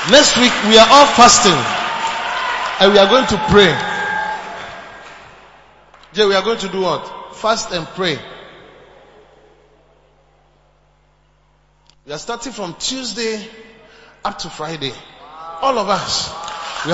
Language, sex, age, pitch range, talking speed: English, male, 30-49, 170-235 Hz, 120 wpm